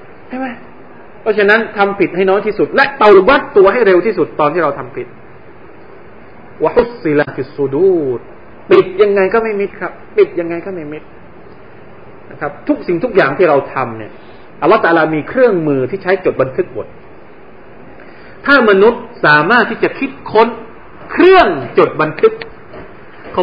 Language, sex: Thai, male